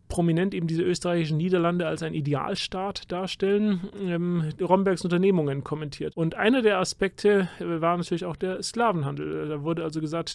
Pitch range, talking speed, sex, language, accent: 150-185 Hz, 160 wpm, male, German, German